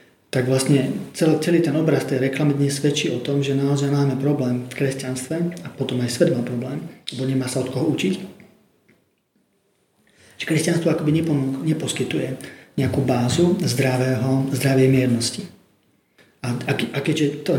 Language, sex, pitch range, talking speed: Slovak, male, 130-150 Hz, 145 wpm